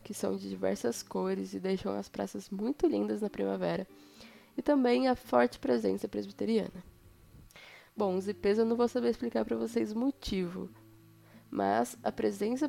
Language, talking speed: Portuguese, 160 wpm